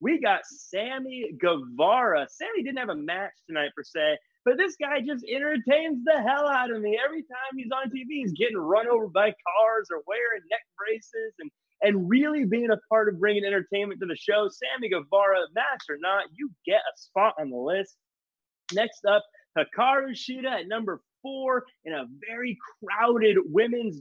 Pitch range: 205-285 Hz